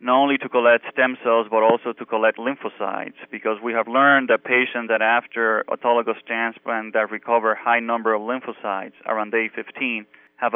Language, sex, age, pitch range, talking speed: English, male, 20-39, 110-125 Hz, 180 wpm